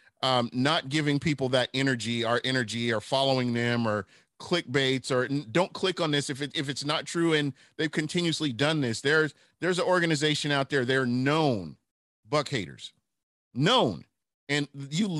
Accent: American